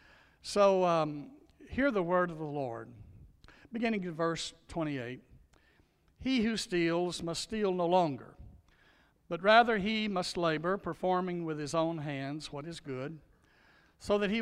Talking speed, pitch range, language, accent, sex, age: 145 wpm, 150-190 Hz, English, American, male, 60-79